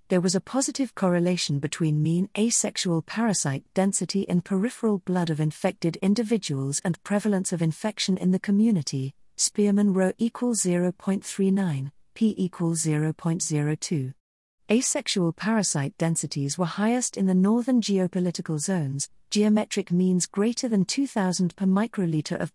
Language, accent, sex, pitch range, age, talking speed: English, British, female, 160-210 Hz, 40-59, 130 wpm